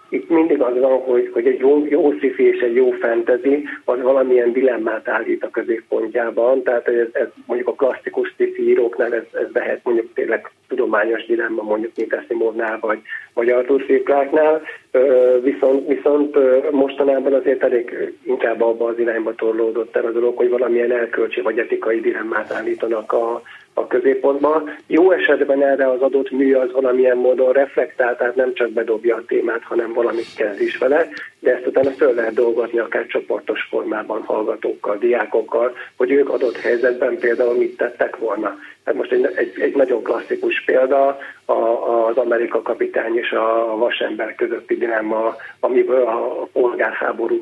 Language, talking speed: Hungarian, 155 wpm